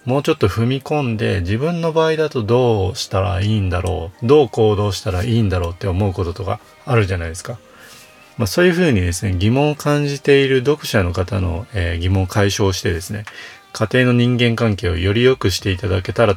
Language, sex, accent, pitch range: Japanese, male, native, 95-120 Hz